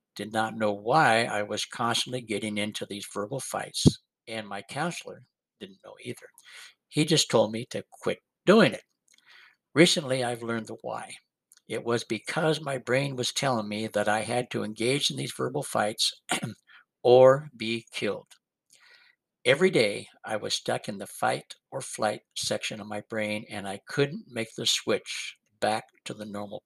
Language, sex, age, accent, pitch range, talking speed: English, male, 60-79, American, 110-140 Hz, 170 wpm